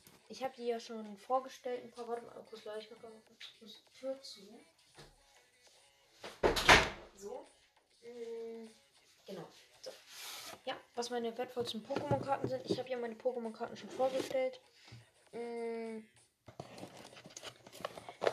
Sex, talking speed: female, 105 wpm